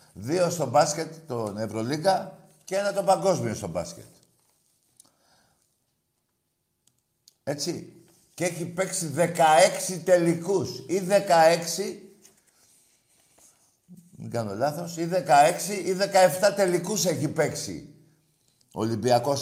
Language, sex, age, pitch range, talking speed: Greek, male, 60-79, 130-180 Hz, 95 wpm